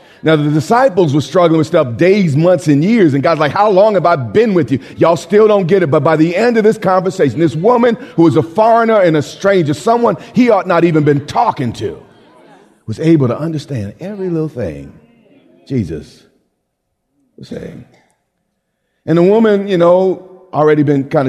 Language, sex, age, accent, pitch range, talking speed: English, male, 40-59, American, 120-175 Hz, 190 wpm